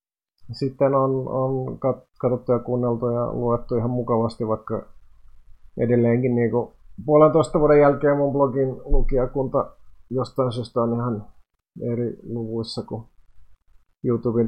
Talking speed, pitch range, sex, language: 110 wpm, 110-130 Hz, male, Finnish